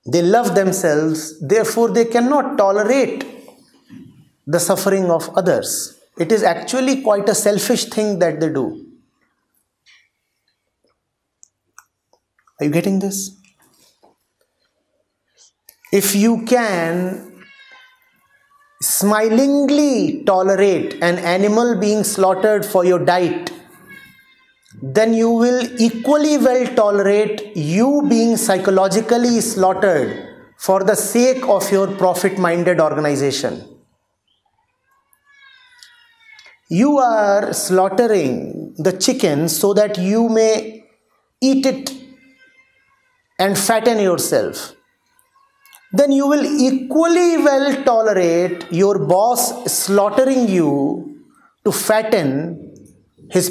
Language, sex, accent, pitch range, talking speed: English, male, Indian, 185-265 Hz, 90 wpm